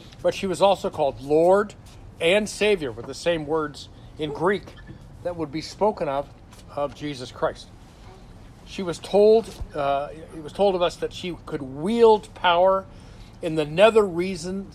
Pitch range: 130-185 Hz